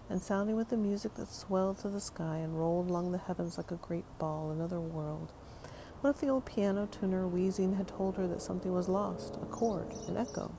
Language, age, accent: English, 40-59, American